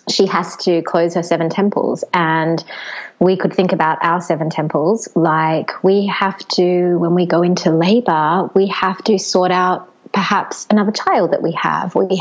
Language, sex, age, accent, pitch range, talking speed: English, female, 20-39, Australian, 170-200 Hz, 175 wpm